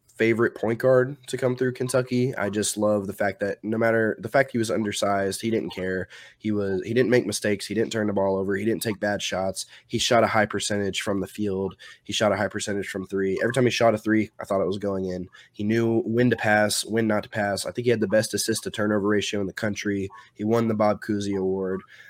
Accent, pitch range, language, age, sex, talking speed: American, 95-115 Hz, English, 20-39, male, 260 wpm